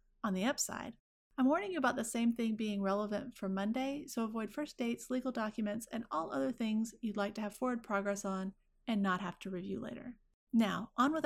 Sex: female